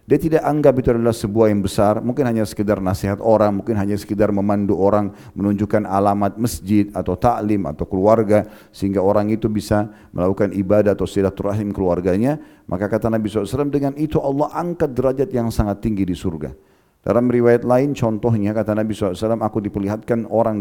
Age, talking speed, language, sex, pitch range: 40-59, 170 wpm, Indonesian, male, 100-115 Hz